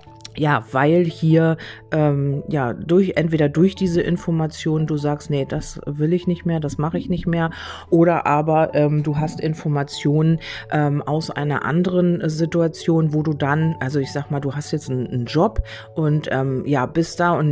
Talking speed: 180 wpm